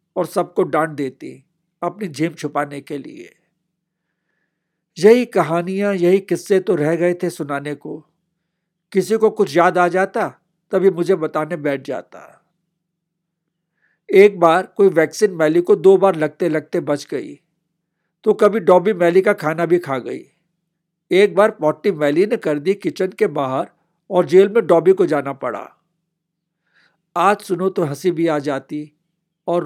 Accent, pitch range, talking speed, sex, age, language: native, 160-190 Hz, 155 wpm, male, 60-79, Hindi